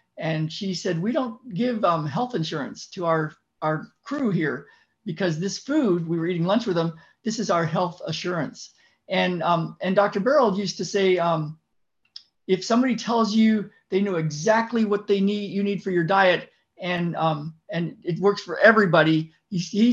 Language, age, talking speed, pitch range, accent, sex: English, 50-69, 180 wpm, 175-215 Hz, American, male